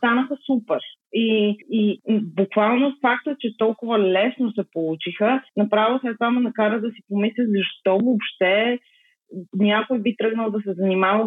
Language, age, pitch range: Bulgarian, 20-39, 185-235 Hz